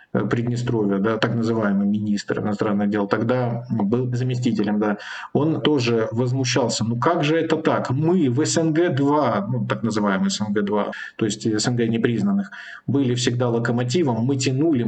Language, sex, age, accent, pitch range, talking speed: Russian, male, 50-69, native, 115-150 Hz, 145 wpm